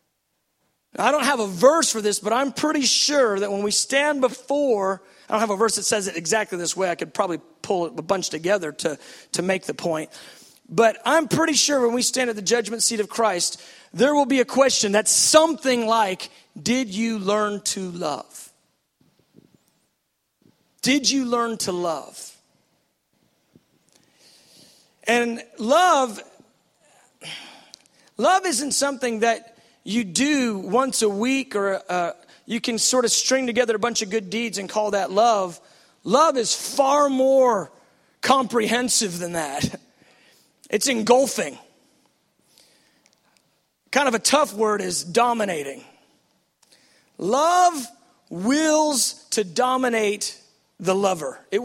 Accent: American